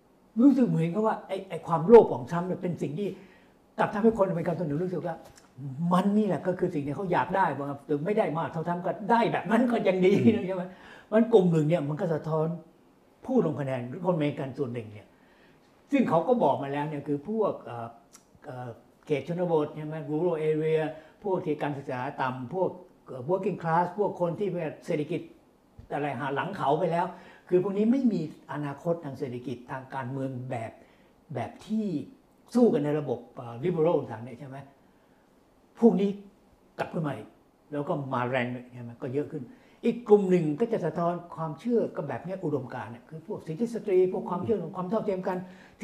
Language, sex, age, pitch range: Thai, male, 60-79, 145-200 Hz